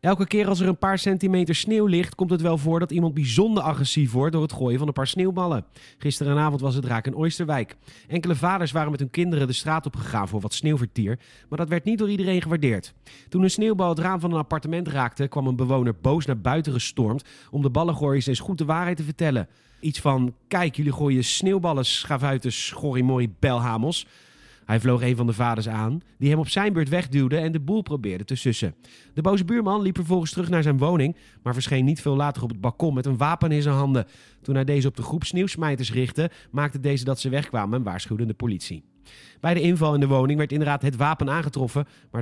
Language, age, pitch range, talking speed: Dutch, 40-59, 125-165 Hz, 220 wpm